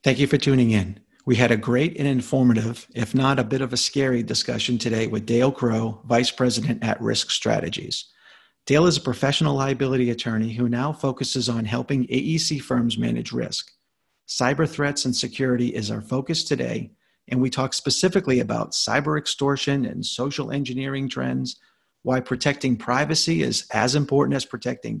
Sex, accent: male, American